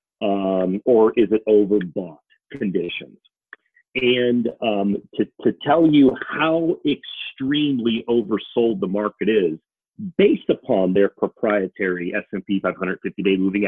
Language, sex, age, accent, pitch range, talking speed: English, male, 40-59, American, 100-140 Hz, 130 wpm